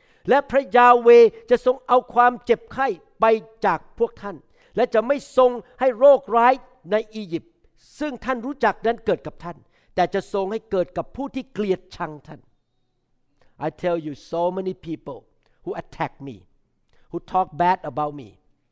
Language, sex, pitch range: Thai, male, 150-220 Hz